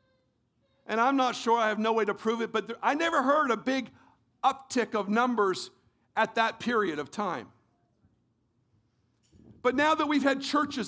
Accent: American